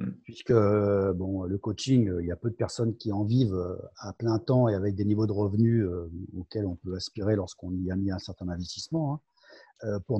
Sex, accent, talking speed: male, French, 200 wpm